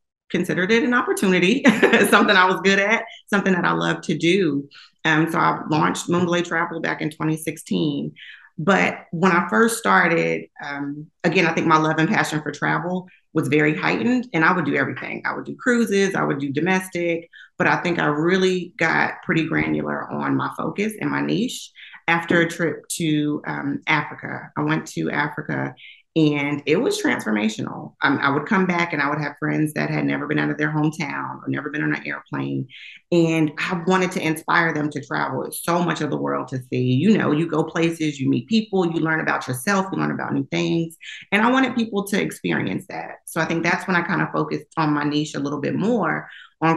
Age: 30-49